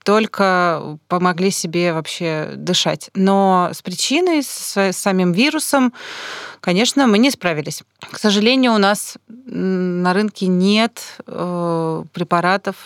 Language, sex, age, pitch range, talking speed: Russian, female, 30-49, 175-230 Hz, 105 wpm